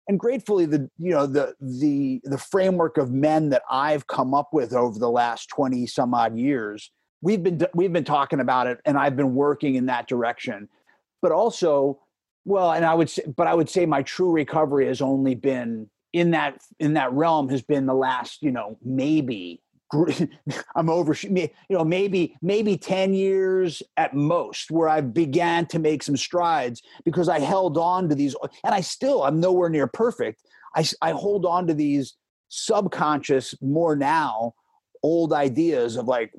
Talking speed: 180 wpm